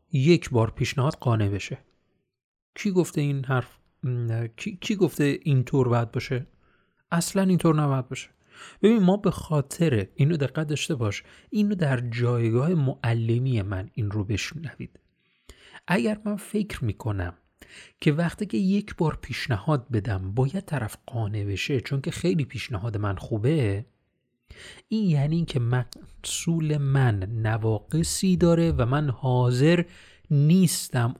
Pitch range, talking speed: 115-175 Hz, 135 wpm